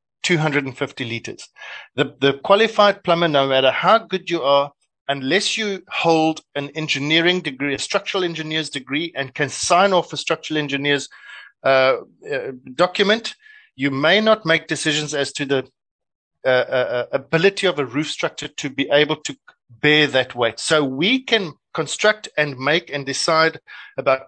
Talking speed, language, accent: 155 wpm, English, South African